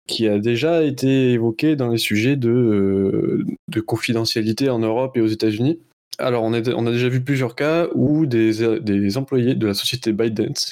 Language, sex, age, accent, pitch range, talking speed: French, male, 20-39, French, 110-130 Hz, 195 wpm